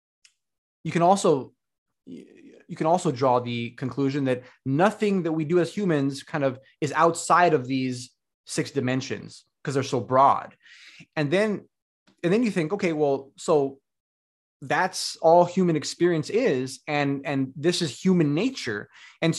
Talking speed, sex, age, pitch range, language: 140 wpm, male, 20-39, 130-165 Hz, English